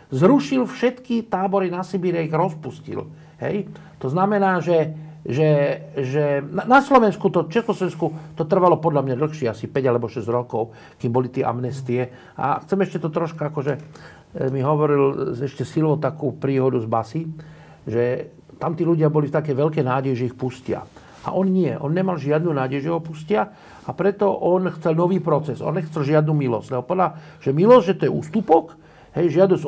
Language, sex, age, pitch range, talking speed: Slovak, male, 50-69, 140-180 Hz, 175 wpm